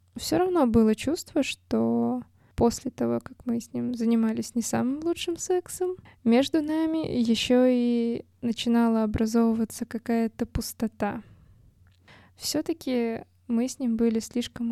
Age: 20-39